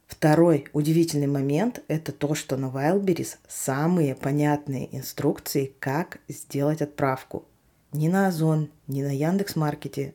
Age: 20-39